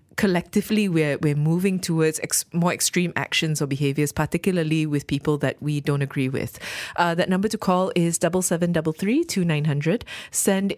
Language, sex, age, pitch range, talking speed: English, female, 20-39, 150-180 Hz, 185 wpm